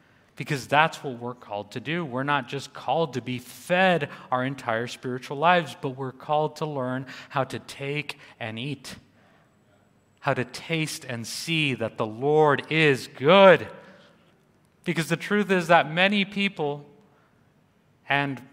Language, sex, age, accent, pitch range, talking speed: English, male, 30-49, American, 125-155 Hz, 150 wpm